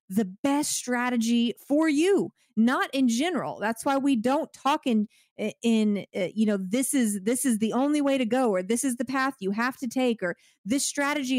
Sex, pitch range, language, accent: female, 205-265 Hz, English, American